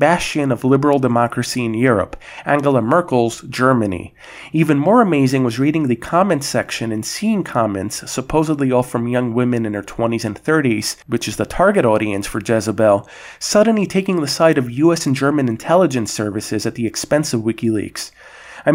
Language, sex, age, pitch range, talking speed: English, male, 30-49, 115-155 Hz, 170 wpm